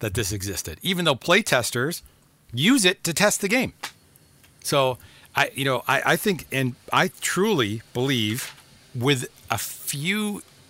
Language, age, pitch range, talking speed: English, 40-59, 110-140 Hz, 150 wpm